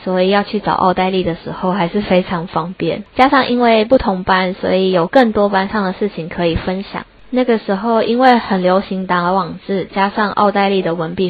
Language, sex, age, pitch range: Chinese, female, 20-39, 180-215 Hz